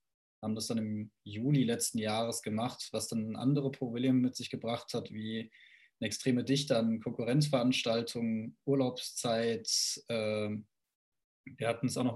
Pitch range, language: 115-130 Hz, German